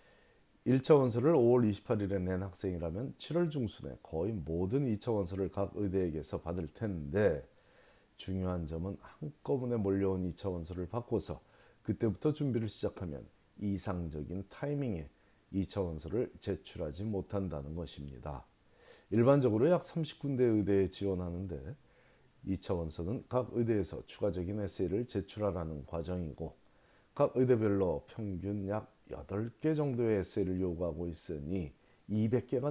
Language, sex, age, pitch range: Korean, male, 40-59, 85-120 Hz